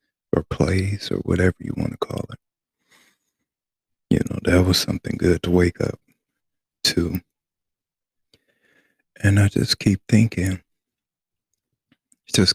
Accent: American